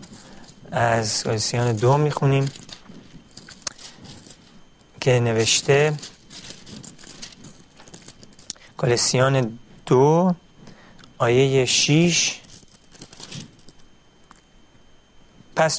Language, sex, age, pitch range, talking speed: Persian, male, 40-59, 125-160 Hz, 40 wpm